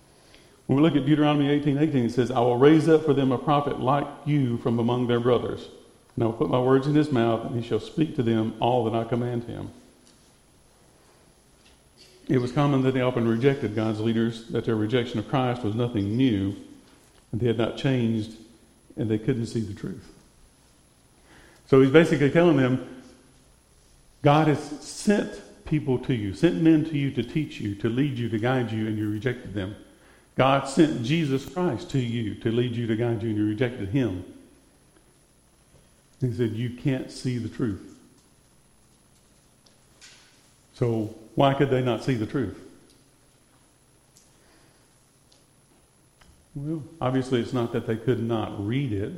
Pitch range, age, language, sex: 110-135 Hz, 50-69, English, male